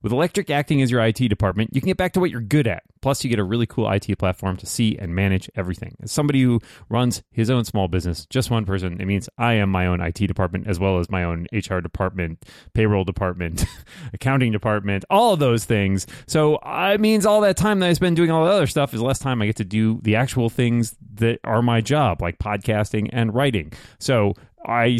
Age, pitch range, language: 30-49, 100-135 Hz, English